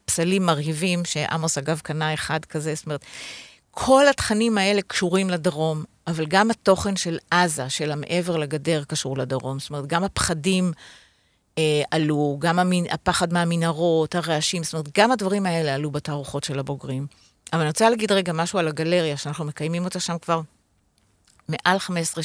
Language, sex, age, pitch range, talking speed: Hebrew, female, 50-69, 155-185 Hz, 155 wpm